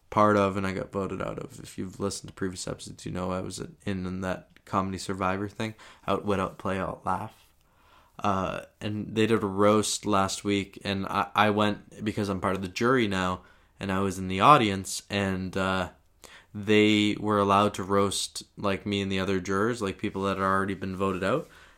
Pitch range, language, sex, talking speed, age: 95-110 Hz, English, male, 210 wpm, 20-39